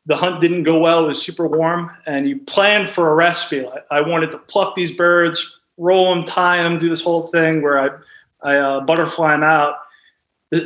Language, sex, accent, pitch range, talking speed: English, male, American, 145-170 Hz, 215 wpm